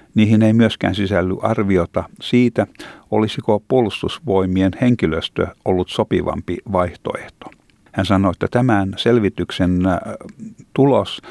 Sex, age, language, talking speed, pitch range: male, 50-69, Finnish, 95 wpm, 90-115 Hz